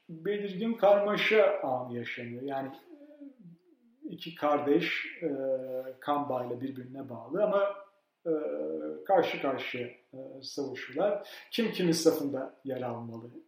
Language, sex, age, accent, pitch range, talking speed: Turkish, male, 40-59, native, 130-195 Hz, 100 wpm